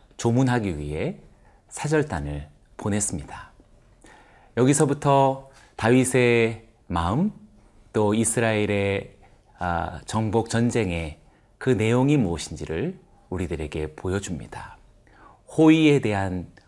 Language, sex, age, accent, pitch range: Korean, male, 40-59, native, 95-130 Hz